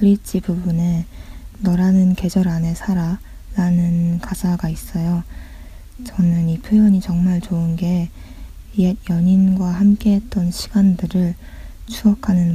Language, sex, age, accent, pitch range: Korean, female, 20-39, native, 170-195 Hz